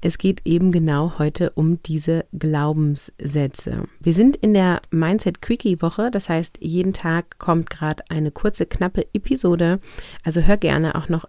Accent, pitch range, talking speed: German, 150-175 Hz, 150 wpm